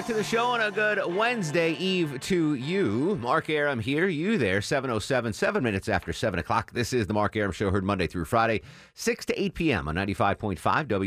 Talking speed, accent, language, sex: 210 wpm, American, English, male